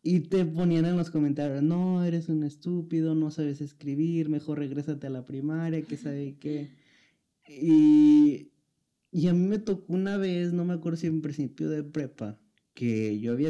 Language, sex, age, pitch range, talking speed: Spanish, male, 20-39, 120-155 Hz, 180 wpm